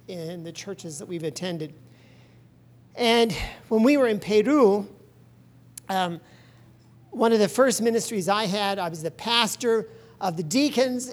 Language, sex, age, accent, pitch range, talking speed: English, male, 50-69, American, 180-235 Hz, 145 wpm